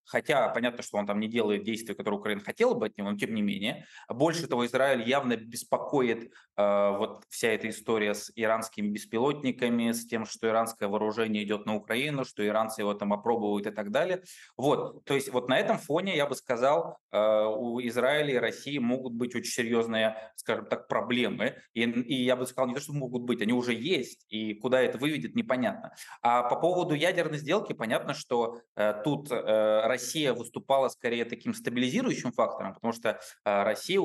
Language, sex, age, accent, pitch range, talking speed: Russian, male, 20-39, native, 105-135 Hz, 190 wpm